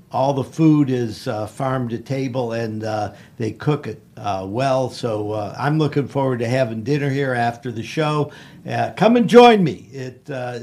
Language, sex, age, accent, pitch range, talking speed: English, male, 50-69, American, 120-150 Hz, 185 wpm